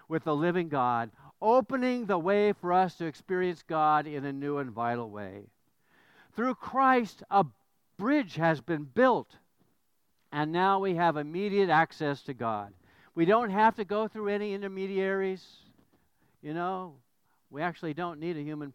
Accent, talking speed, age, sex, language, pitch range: American, 155 wpm, 60-79, male, English, 130-195 Hz